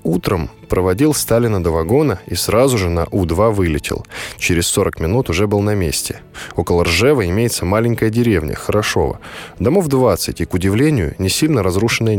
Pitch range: 85-125 Hz